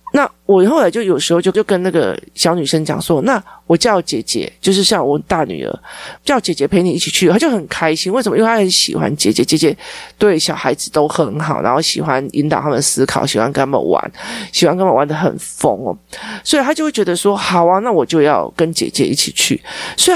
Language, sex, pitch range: Chinese, male, 155-210 Hz